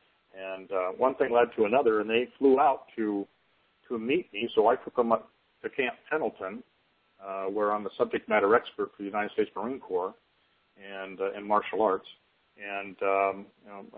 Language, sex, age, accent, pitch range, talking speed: English, male, 50-69, American, 100-125 Hz, 195 wpm